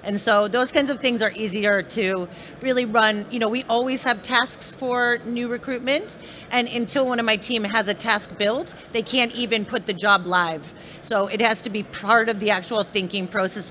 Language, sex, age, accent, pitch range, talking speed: English, female, 30-49, American, 205-245 Hz, 210 wpm